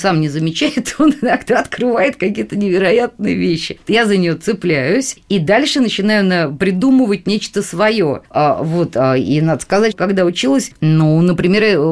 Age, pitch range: 20-39, 155-205 Hz